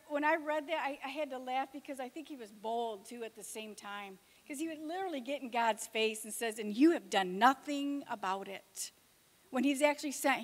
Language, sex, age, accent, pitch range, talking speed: English, female, 50-69, American, 250-335 Hz, 235 wpm